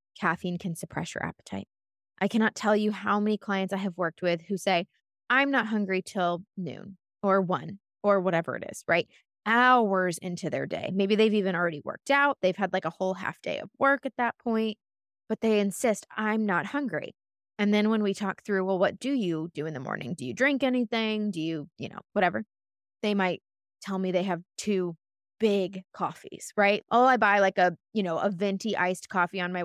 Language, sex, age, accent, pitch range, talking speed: English, female, 20-39, American, 180-220 Hz, 210 wpm